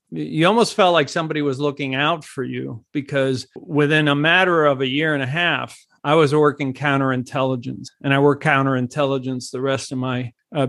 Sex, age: male, 50-69